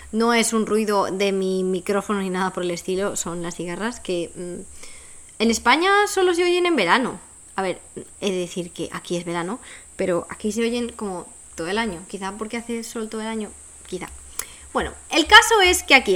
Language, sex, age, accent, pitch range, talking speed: Spanish, female, 20-39, Spanish, 195-265 Hz, 210 wpm